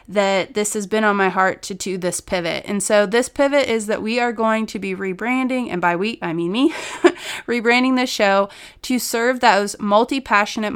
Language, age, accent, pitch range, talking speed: English, 30-49, American, 195-230 Hz, 200 wpm